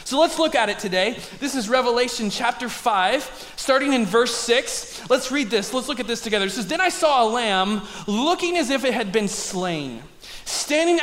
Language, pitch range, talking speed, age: English, 205-275 Hz, 205 wpm, 20-39